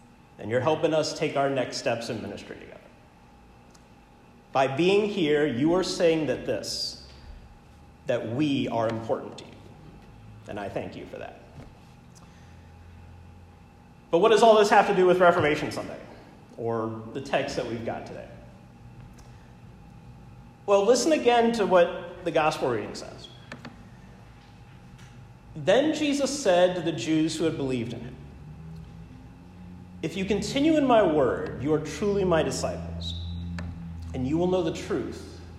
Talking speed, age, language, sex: 145 wpm, 40-59, English, male